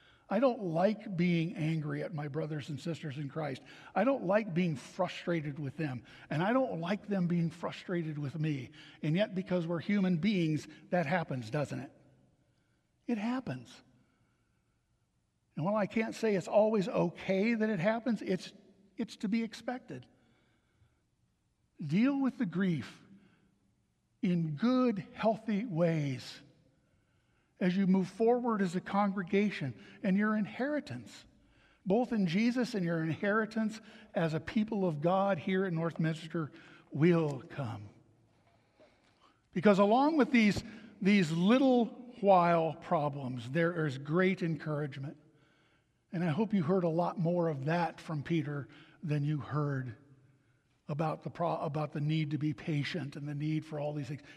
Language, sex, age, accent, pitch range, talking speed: English, male, 60-79, American, 150-205 Hz, 145 wpm